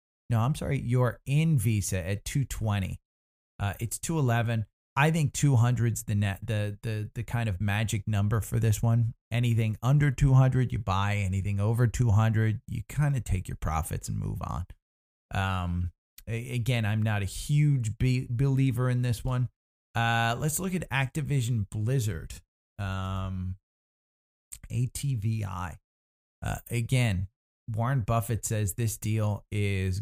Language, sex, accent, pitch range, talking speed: English, male, American, 95-120 Hz, 140 wpm